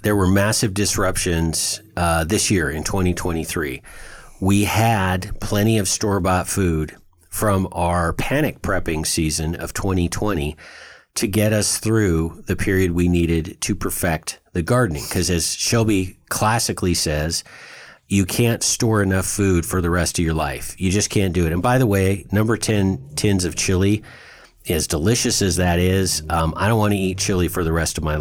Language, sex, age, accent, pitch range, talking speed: English, male, 50-69, American, 85-105 Hz, 170 wpm